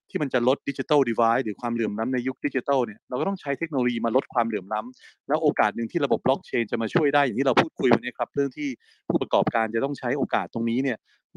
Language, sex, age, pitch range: Thai, male, 30-49, 115-140 Hz